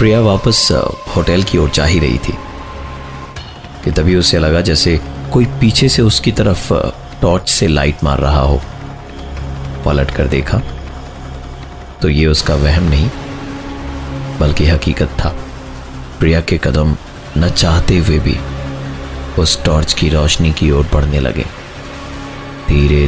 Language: Hindi